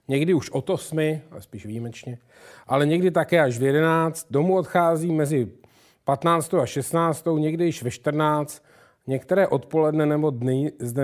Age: 40-59